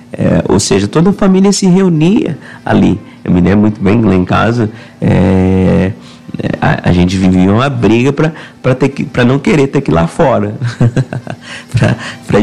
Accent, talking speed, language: Brazilian, 165 wpm, English